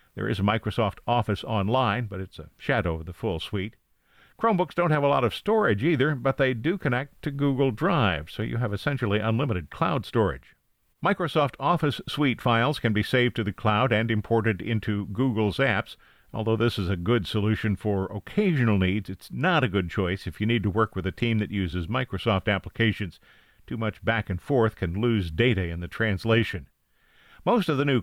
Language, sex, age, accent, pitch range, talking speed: English, male, 50-69, American, 100-130 Hz, 195 wpm